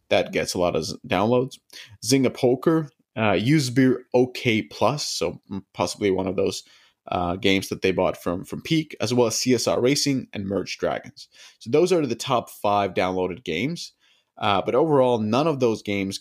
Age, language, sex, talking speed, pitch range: 20-39, English, male, 180 wpm, 100-130 Hz